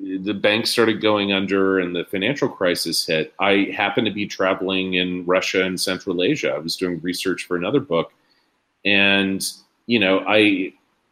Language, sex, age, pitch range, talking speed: English, male, 30-49, 95-115 Hz, 165 wpm